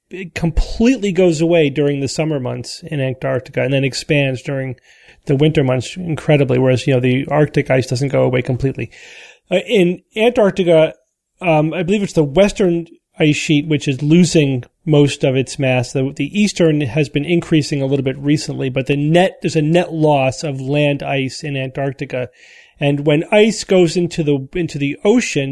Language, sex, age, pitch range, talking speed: English, male, 40-59, 140-165 Hz, 180 wpm